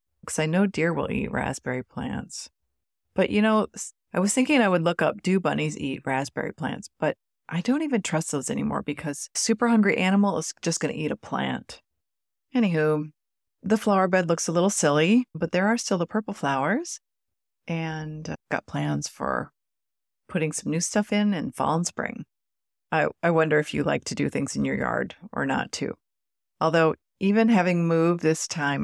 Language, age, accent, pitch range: English, 30-49, American, 150-205 Hz